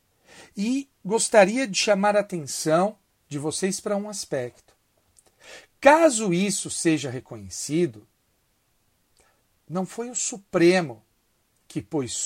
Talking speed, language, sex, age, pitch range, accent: 105 wpm, Portuguese, male, 60-79, 115-170 Hz, Brazilian